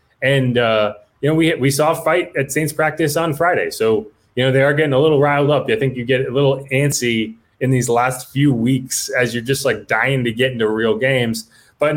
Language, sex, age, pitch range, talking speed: English, male, 20-39, 120-160 Hz, 235 wpm